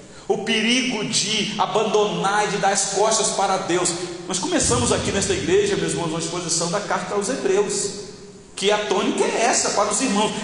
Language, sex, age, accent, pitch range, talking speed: Portuguese, male, 40-59, Brazilian, 160-250 Hz, 185 wpm